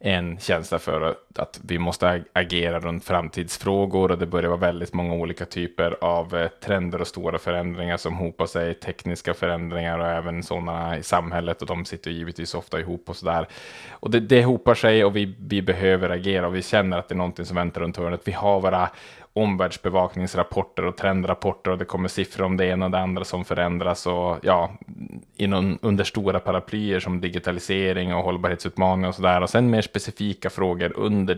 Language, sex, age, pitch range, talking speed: Swedish, male, 20-39, 85-100 Hz, 185 wpm